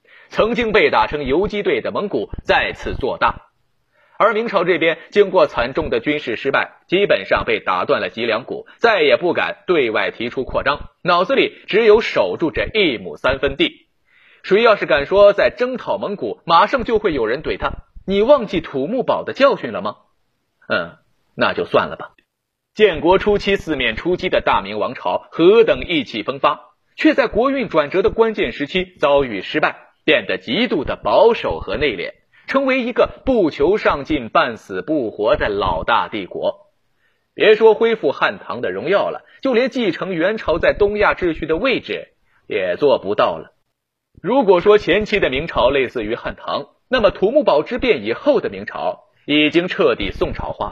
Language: Chinese